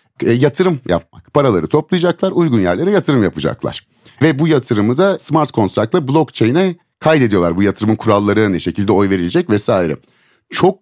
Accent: native